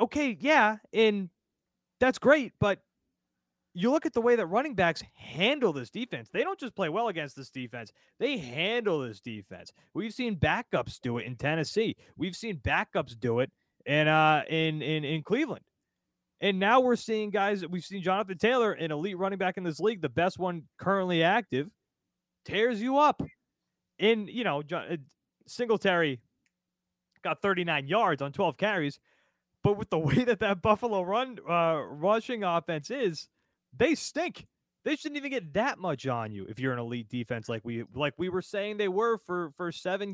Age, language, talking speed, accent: 20-39, English, 180 wpm, American